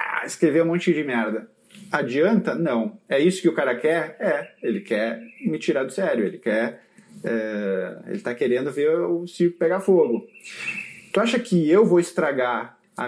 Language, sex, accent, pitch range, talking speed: Portuguese, male, Brazilian, 145-205 Hz, 175 wpm